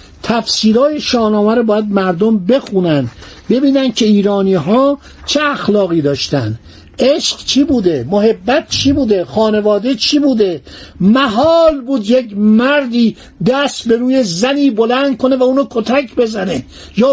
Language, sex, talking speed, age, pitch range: Persian, male, 130 wpm, 50-69, 205-270 Hz